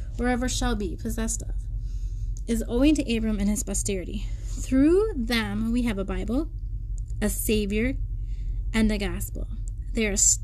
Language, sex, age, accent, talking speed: English, female, 20-39, American, 145 wpm